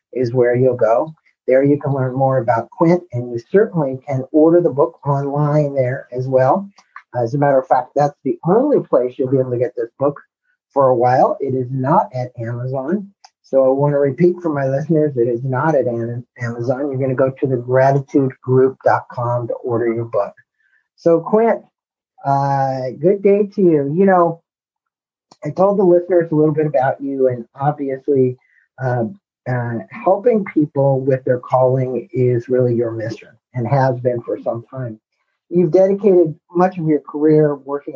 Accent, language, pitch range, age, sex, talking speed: American, English, 130-175 Hz, 50-69, male, 180 wpm